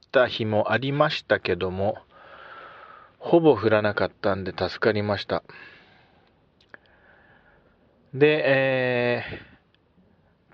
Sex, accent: male, native